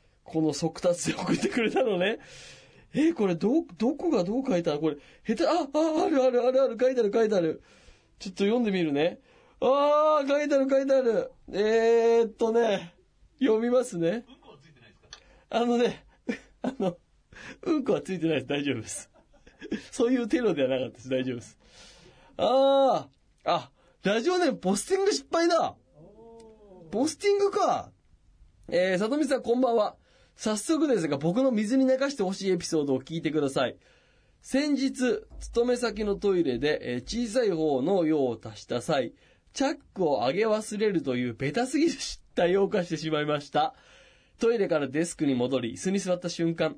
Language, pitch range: Japanese, 155-255 Hz